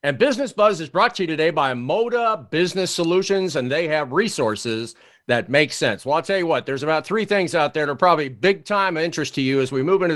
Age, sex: 50-69, male